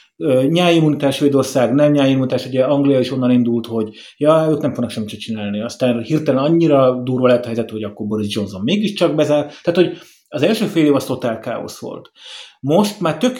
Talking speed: 195 wpm